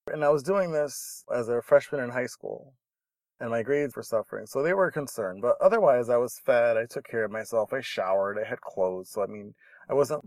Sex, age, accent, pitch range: male, 20-39, American, 120-155 Hz